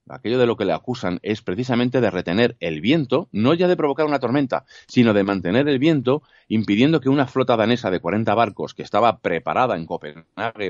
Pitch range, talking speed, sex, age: 85-120 Hz, 200 wpm, male, 30-49